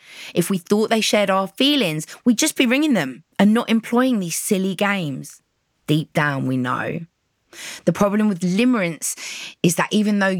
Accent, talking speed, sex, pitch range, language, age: British, 175 wpm, female, 145-190 Hz, English, 20-39